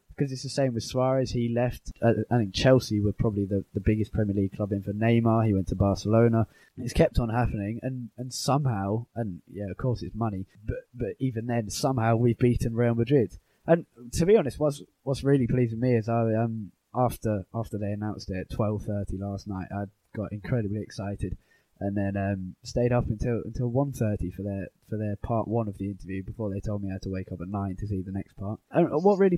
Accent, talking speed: British, 230 wpm